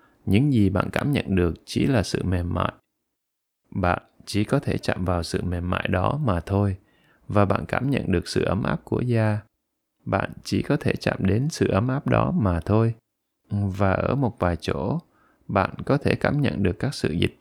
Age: 20-39